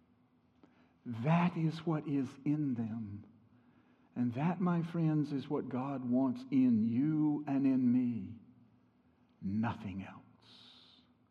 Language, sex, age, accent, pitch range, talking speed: English, male, 60-79, American, 125-180 Hz, 110 wpm